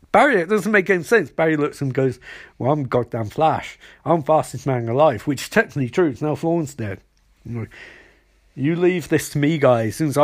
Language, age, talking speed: English, 50-69, 195 wpm